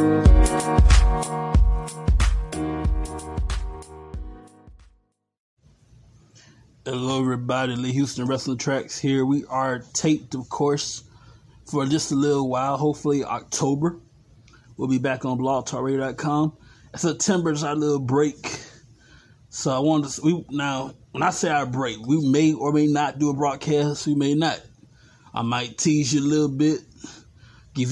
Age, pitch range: 20-39, 120-150 Hz